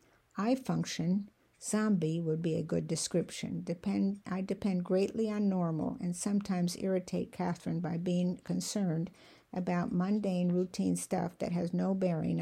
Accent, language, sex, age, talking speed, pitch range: American, English, female, 60-79, 135 wpm, 175-200 Hz